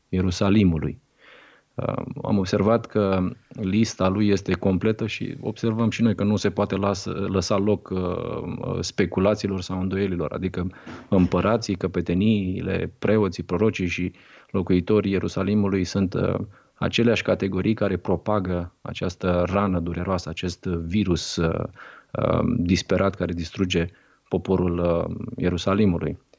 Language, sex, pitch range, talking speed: Romanian, male, 90-110 Hz, 100 wpm